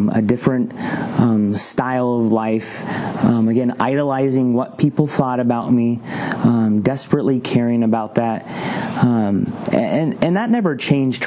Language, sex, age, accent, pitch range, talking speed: English, male, 30-49, American, 110-140 Hz, 135 wpm